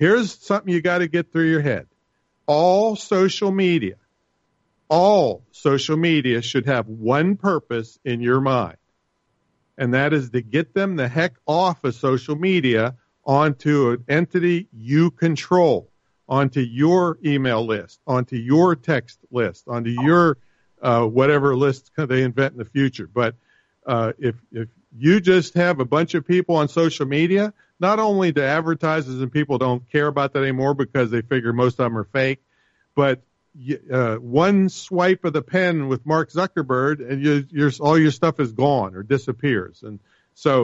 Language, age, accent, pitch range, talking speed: English, 50-69, American, 125-170 Hz, 165 wpm